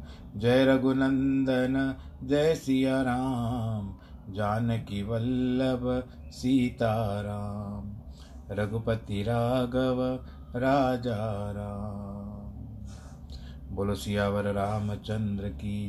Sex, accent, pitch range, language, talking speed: male, native, 75-120 Hz, Hindi, 55 wpm